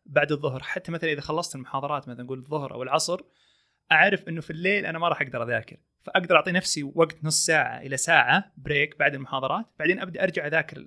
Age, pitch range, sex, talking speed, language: 30-49, 140-180 Hz, male, 200 wpm, Arabic